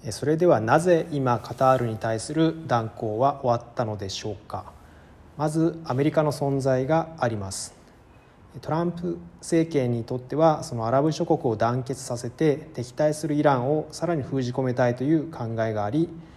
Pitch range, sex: 115-155 Hz, male